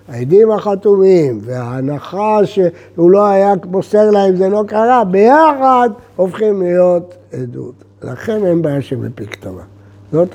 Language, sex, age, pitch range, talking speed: Hebrew, male, 60-79, 120-185 Hz, 130 wpm